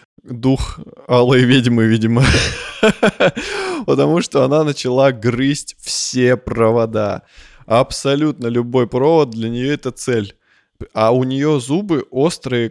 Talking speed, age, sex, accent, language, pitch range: 110 wpm, 20-39, male, native, Russian, 110-135 Hz